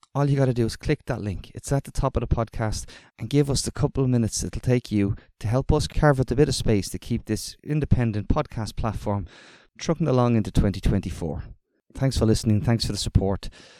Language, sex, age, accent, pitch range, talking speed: English, male, 30-49, Irish, 105-125 Hz, 230 wpm